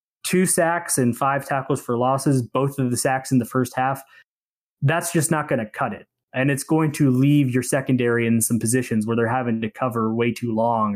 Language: English